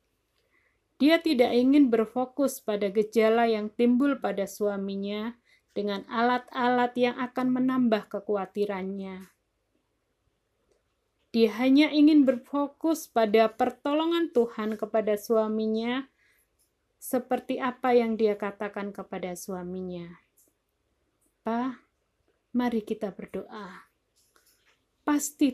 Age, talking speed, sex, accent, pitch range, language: 30-49, 85 wpm, female, native, 210-255 Hz, Indonesian